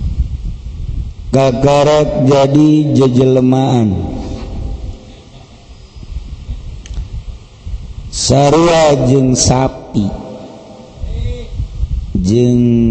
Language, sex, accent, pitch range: Indonesian, male, native, 100-145 Hz